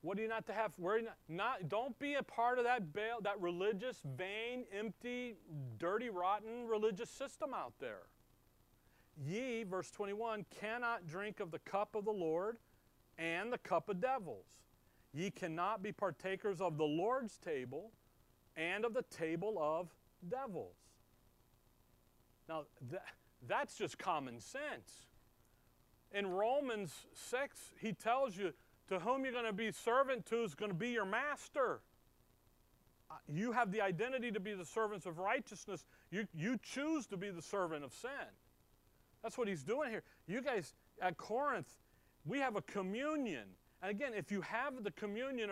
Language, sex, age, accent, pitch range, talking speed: English, male, 40-59, American, 170-230 Hz, 160 wpm